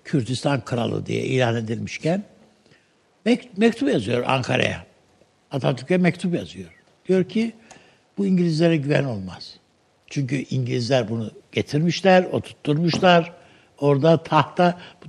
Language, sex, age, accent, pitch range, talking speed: Turkish, male, 60-79, native, 140-200 Hz, 105 wpm